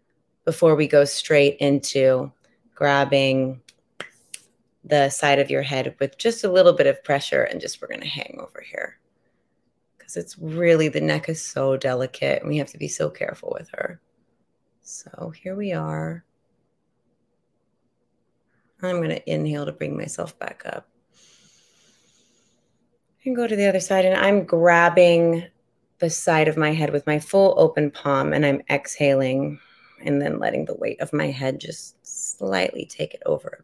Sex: female